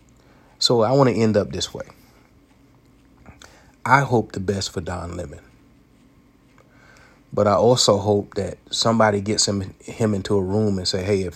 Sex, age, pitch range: male, 30-49, 95-105 Hz